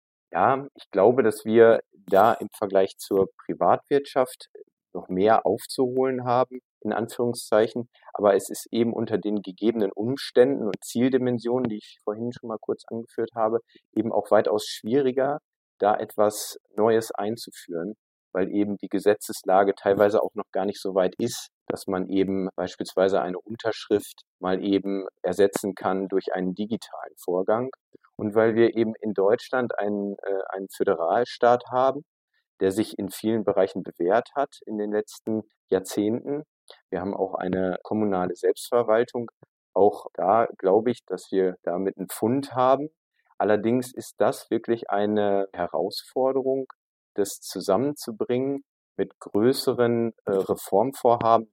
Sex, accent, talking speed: male, German, 135 wpm